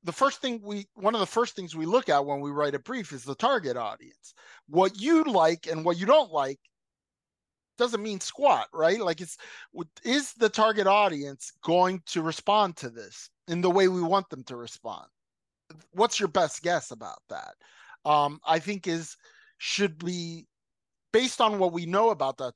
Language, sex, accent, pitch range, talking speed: English, male, American, 145-195 Hz, 190 wpm